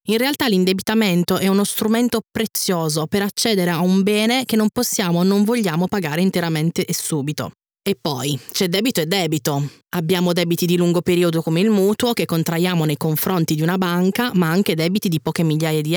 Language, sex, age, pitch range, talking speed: Italian, female, 20-39, 165-200 Hz, 190 wpm